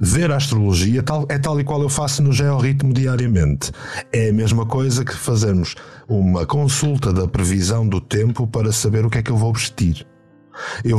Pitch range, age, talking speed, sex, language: 100-135 Hz, 50-69, 185 wpm, male, Portuguese